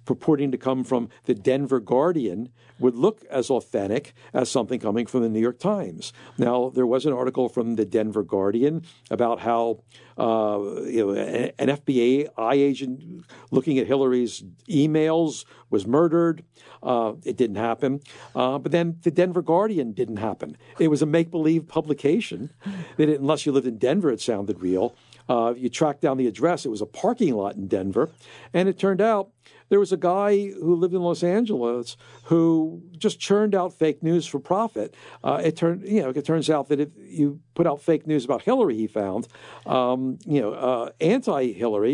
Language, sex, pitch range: English, male, 120-160 Hz